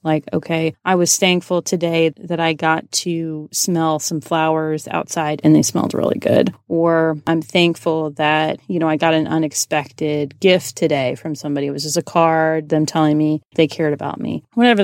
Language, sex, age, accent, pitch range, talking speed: English, female, 30-49, American, 160-195 Hz, 185 wpm